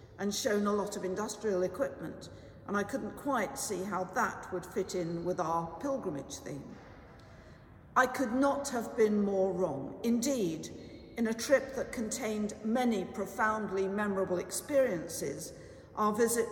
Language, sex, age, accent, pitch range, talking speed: English, female, 50-69, British, 185-230 Hz, 145 wpm